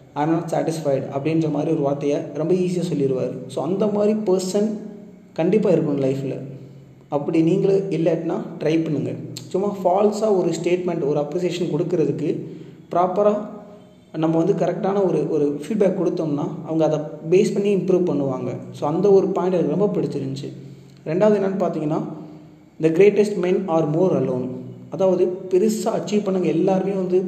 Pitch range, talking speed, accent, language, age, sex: 140-180 Hz, 145 wpm, native, Tamil, 30-49, male